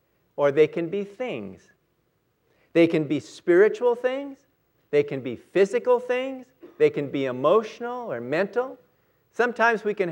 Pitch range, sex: 165-265 Hz, male